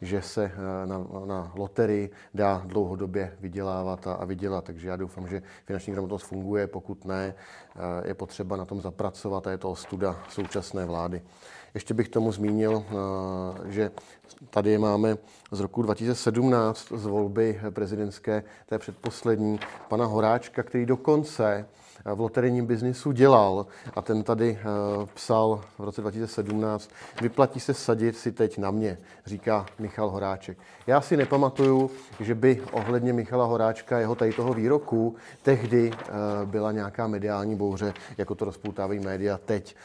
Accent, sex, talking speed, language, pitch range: native, male, 145 wpm, Czech, 100-115 Hz